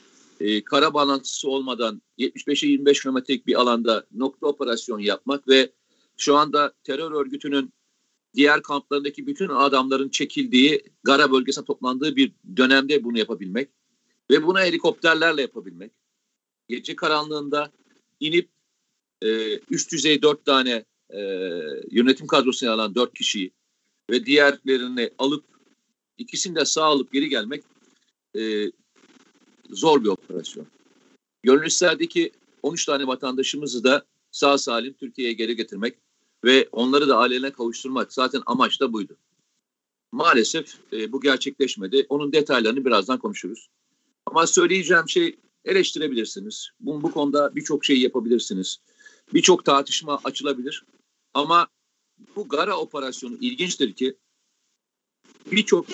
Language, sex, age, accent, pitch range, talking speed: Turkish, male, 50-69, native, 130-170 Hz, 115 wpm